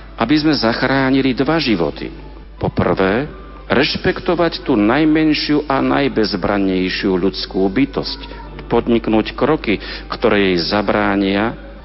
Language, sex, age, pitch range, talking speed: Slovak, male, 50-69, 100-145 Hz, 95 wpm